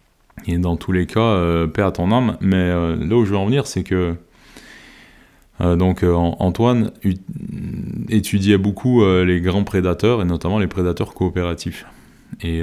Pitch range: 85-105 Hz